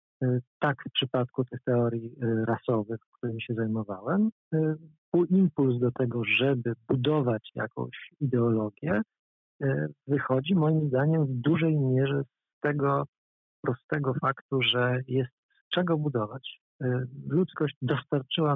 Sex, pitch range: male, 115-140 Hz